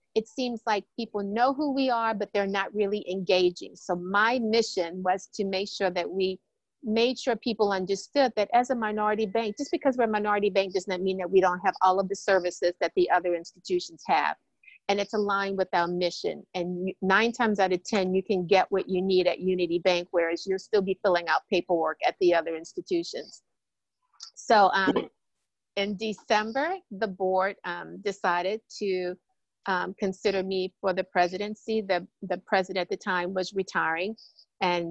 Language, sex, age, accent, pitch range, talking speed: English, female, 50-69, American, 175-205 Hz, 185 wpm